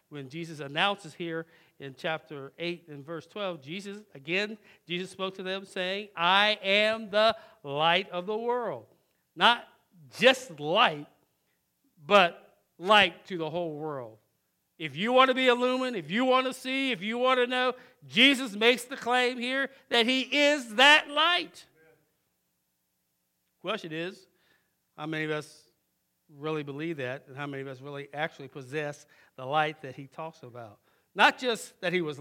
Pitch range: 155-230 Hz